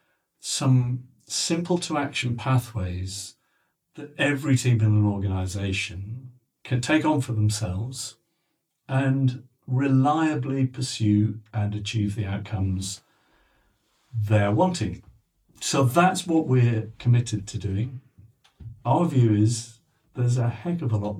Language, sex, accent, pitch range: English, male, British, 105-130 Hz